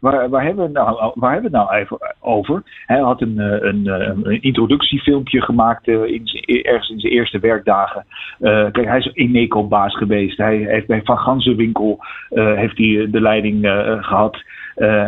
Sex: male